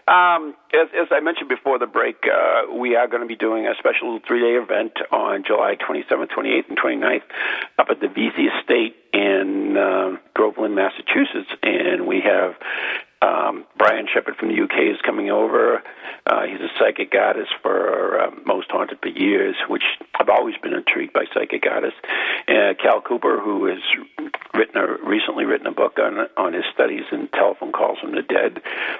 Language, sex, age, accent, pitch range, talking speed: English, male, 60-79, American, 305-415 Hz, 180 wpm